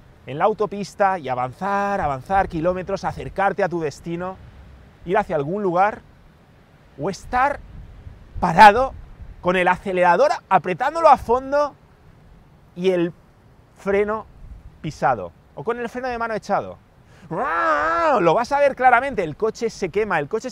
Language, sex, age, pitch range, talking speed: English, male, 30-49, 165-225 Hz, 135 wpm